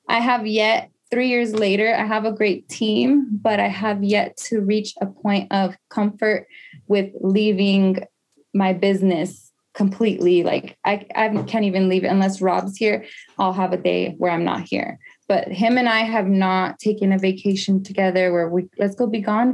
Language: English